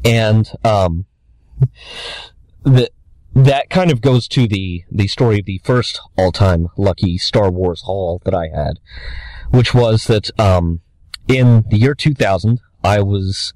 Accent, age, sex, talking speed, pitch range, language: American, 40-59, male, 145 wpm, 90-125 Hz, English